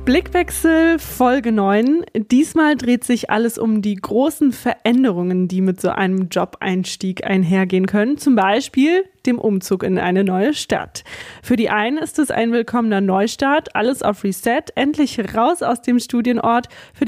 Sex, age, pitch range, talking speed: female, 20-39, 205-255 Hz, 150 wpm